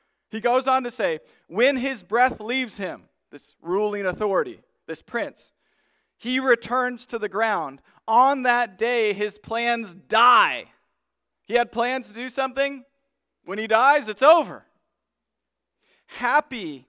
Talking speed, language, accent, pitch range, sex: 135 wpm, English, American, 215-260 Hz, male